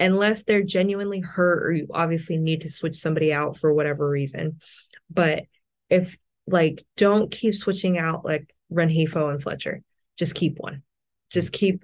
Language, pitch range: English, 150-180 Hz